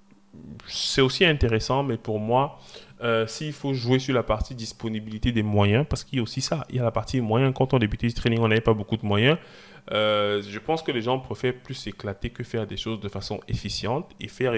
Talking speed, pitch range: 235 wpm, 110-135 Hz